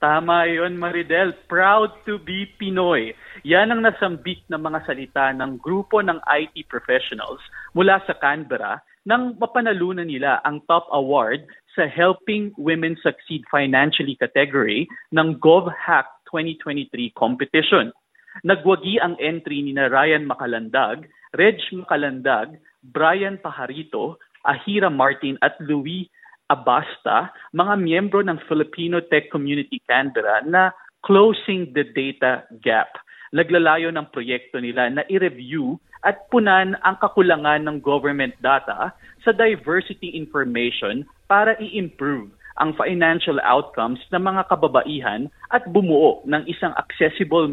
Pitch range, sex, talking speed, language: 145-190 Hz, male, 120 wpm, Filipino